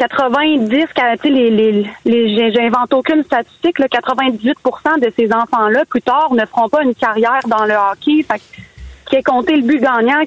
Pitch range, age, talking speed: 230-285 Hz, 30-49, 195 wpm